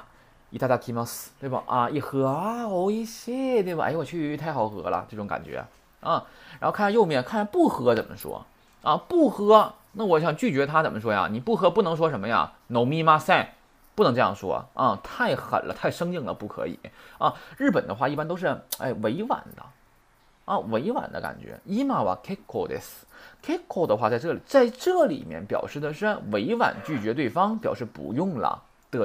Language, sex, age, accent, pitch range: Chinese, male, 20-39, native, 140-225 Hz